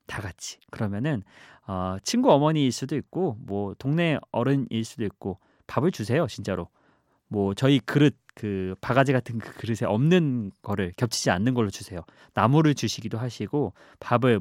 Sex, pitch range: male, 110-155 Hz